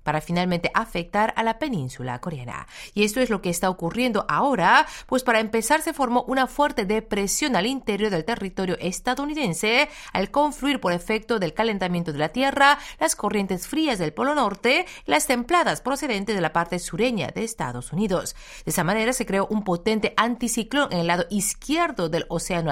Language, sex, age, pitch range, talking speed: Spanish, female, 40-59, 180-260 Hz, 180 wpm